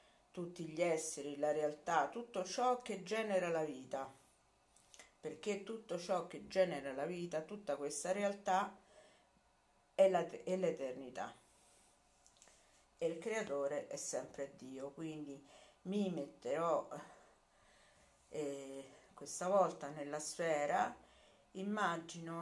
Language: Italian